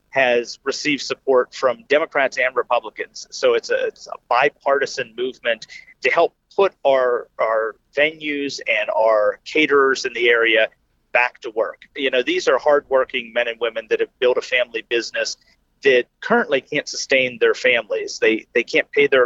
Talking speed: 170 wpm